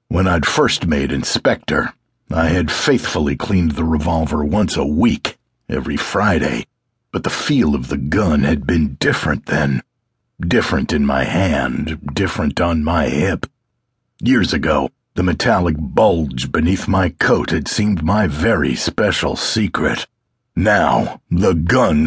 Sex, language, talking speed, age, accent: male, English, 140 wpm, 50-69, American